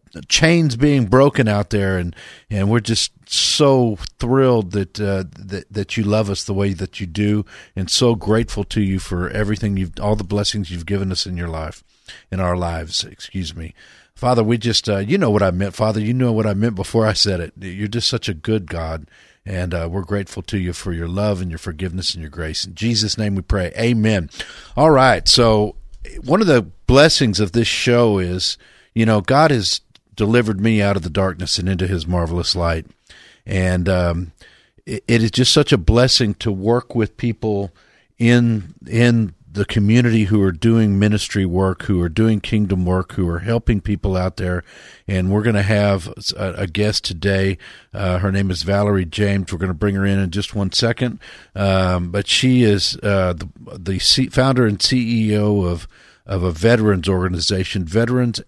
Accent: American